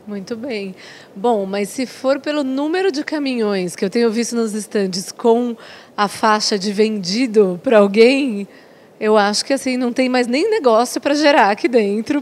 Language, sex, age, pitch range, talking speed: Portuguese, female, 20-39, 210-245 Hz, 175 wpm